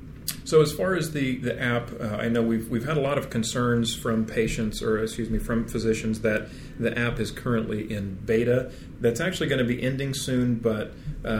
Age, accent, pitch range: 40-59, American, 115-130 Hz